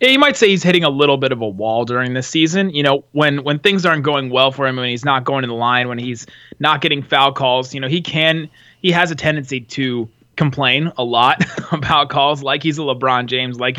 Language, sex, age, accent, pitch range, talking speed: English, male, 30-49, American, 120-150 Hz, 250 wpm